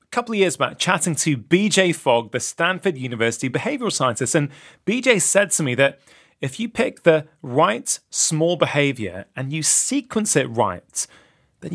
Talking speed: 170 wpm